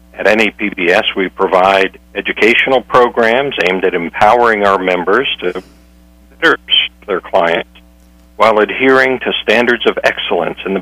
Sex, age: male, 60-79